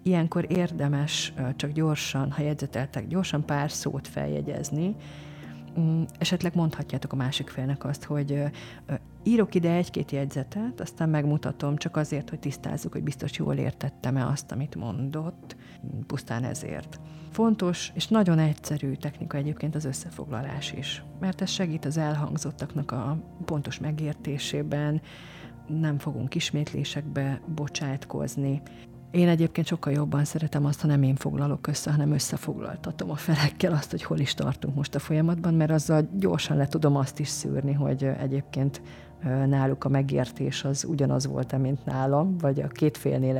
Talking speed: 140 wpm